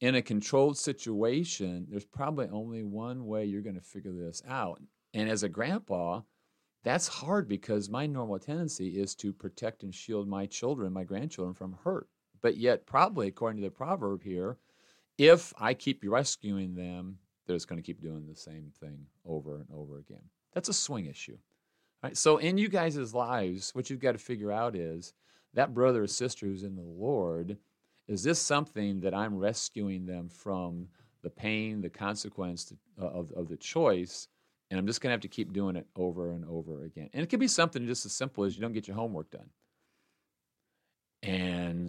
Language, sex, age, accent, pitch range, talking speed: English, male, 40-59, American, 90-120 Hz, 190 wpm